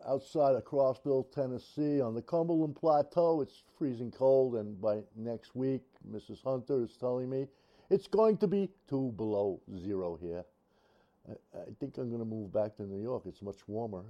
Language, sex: English, male